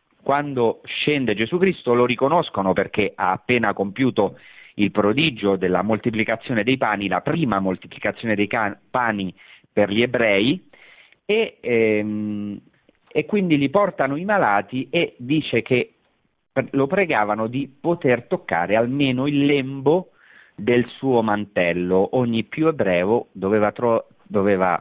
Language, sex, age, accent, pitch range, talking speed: Italian, male, 40-59, native, 100-130 Hz, 120 wpm